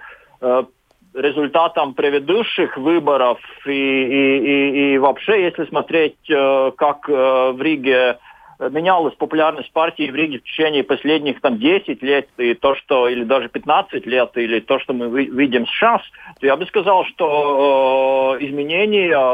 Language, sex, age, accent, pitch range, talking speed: Russian, male, 50-69, native, 140-190 Hz, 135 wpm